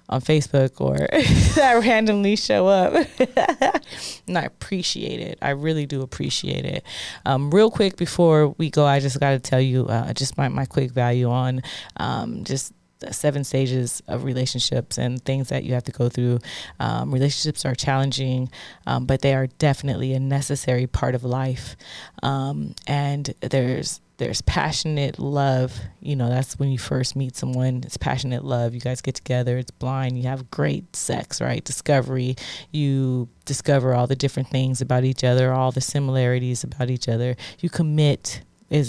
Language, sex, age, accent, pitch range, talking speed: English, female, 20-39, American, 130-150 Hz, 170 wpm